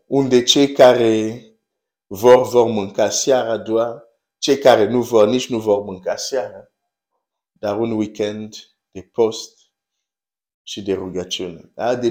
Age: 50-69